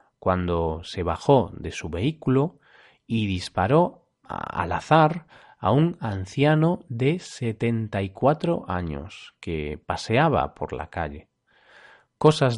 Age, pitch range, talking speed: 30-49, 95-140 Hz, 110 wpm